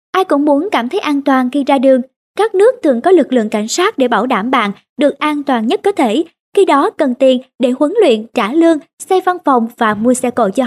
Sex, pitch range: male, 245-330 Hz